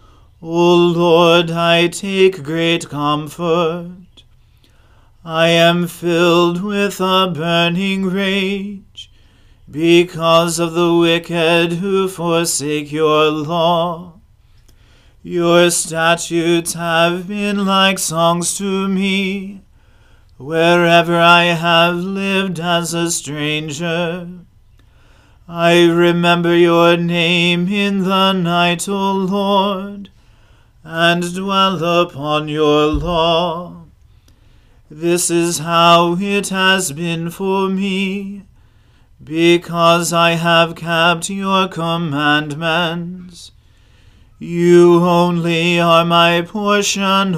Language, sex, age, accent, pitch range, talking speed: English, male, 40-59, American, 155-180 Hz, 85 wpm